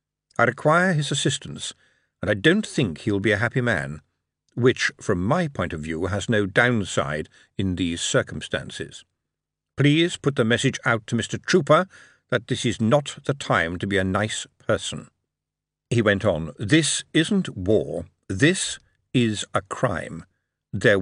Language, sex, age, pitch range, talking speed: English, male, 50-69, 100-145 Hz, 155 wpm